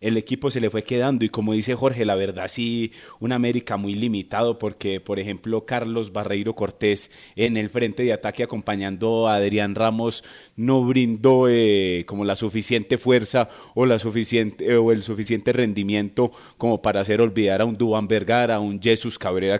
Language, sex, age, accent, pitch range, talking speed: Spanish, male, 30-49, Colombian, 105-120 Hz, 180 wpm